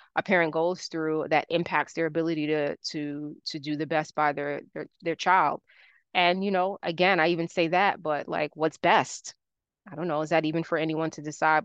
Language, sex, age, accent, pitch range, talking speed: English, female, 20-39, American, 150-170 Hz, 210 wpm